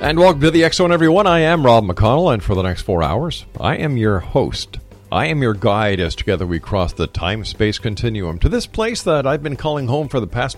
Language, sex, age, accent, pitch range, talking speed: English, male, 50-69, American, 90-120 Hz, 240 wpm